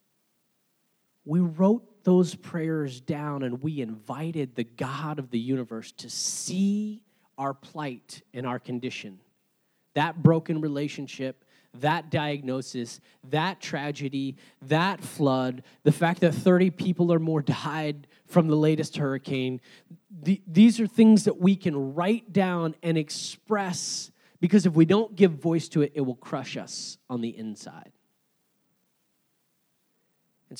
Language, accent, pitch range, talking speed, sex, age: English, American, 135-175 Hz, 130 wpm, male, 30-49